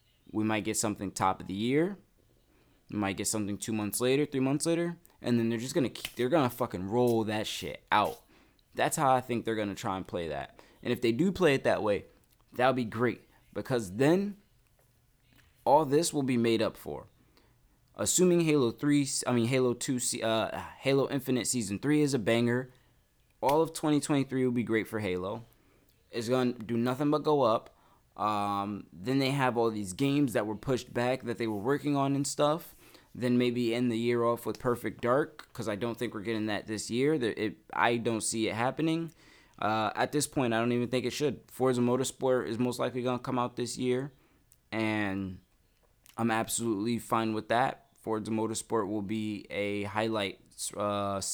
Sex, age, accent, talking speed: male, 20-39, American, 200 wpm